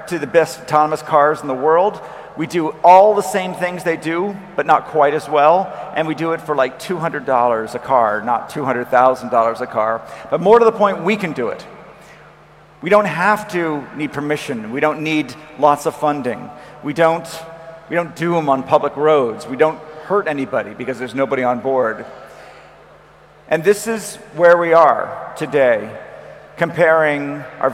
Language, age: Chinese, 50-69